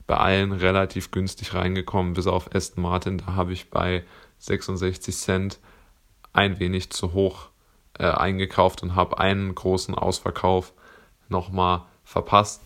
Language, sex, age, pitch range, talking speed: German, male, 20-39, 90-100 Hz, 135 wpm